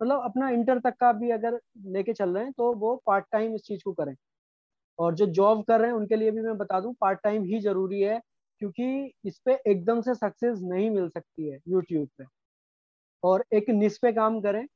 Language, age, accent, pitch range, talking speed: Hindi, 20-39, native, 185-220 Hz, 220 wpm